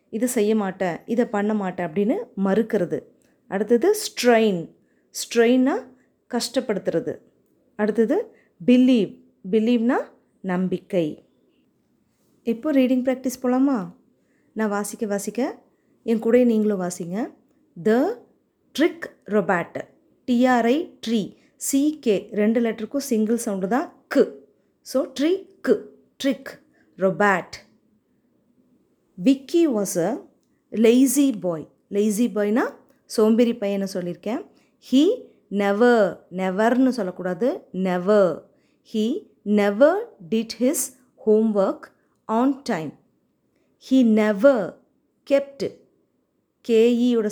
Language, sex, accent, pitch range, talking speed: Tamil, female, native, 205-265 Hz, 90 wpm